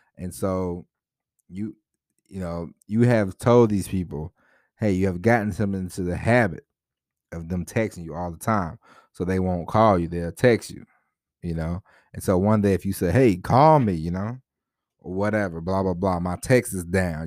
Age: 30-49